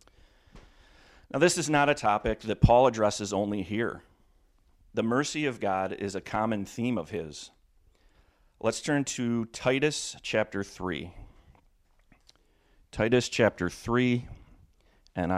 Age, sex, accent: 40-59, male, American